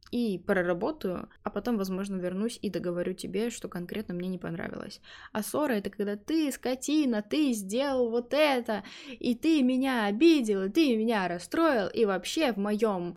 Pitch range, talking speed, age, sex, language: 195-245 Hz, 165 wpm, 20-39, female, Russian